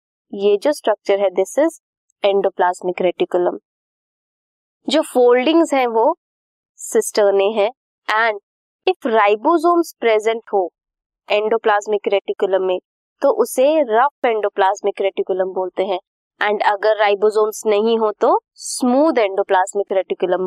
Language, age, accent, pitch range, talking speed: Hindi, 20-39, native, 205-280 Hz, 115 wpm